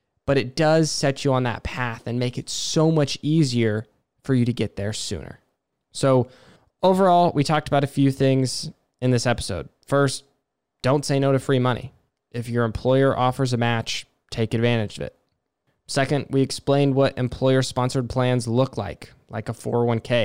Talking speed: 175 wpm